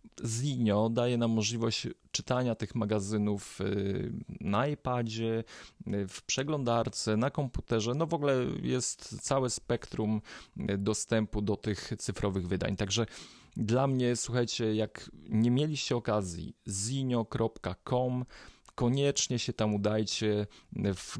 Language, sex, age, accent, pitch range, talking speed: Polish, male, 30-49, native, 105-125 Hz, 110 wpm